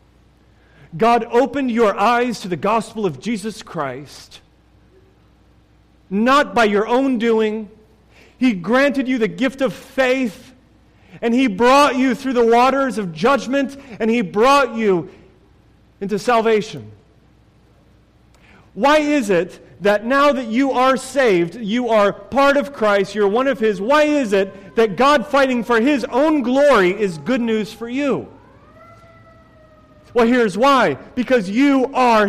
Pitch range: 205-275 Hz